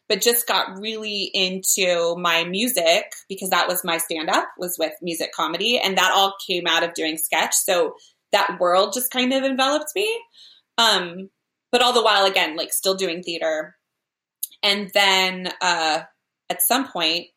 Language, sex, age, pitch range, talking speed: English, female, 20-39, 170-215 Hz, 165 wpm